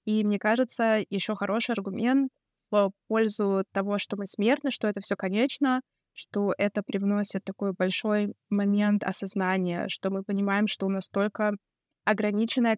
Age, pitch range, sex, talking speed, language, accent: 20-39, 185-215 Hz, female, 150 wpm, Russian, native